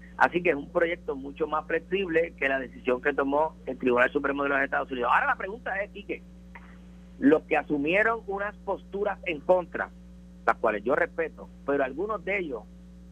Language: Spanish